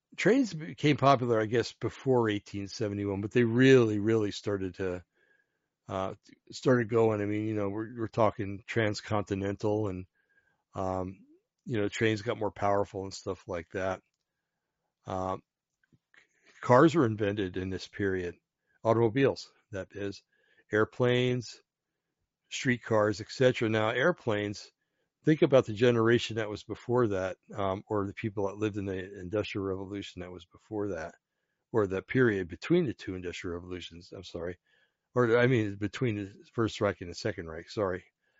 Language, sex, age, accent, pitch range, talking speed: English, male, 60-79, American, 100-125 Hz, 150 wpm